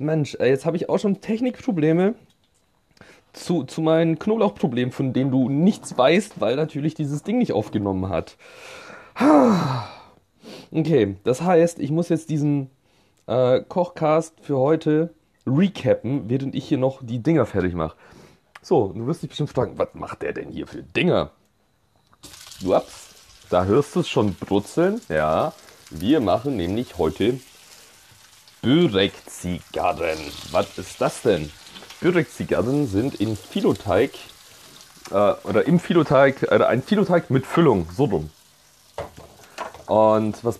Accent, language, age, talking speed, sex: German, German, 30-49, 135 wpm, male